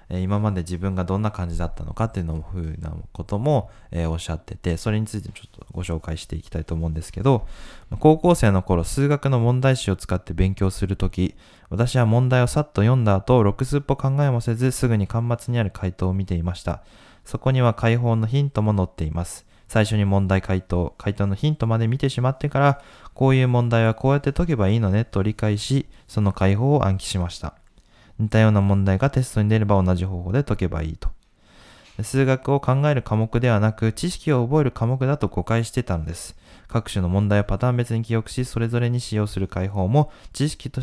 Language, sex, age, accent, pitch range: Japanese, male, 20-39, native, 95-125 Hz